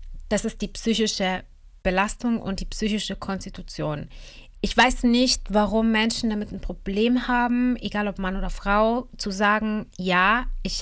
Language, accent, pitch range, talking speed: German, German, 180-205 Hz, 150 wpm